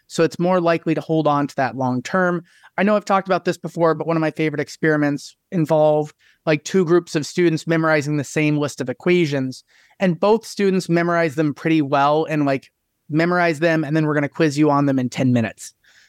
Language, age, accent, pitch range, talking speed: English, 30-49, American, 145-175 Hz, 220 wpm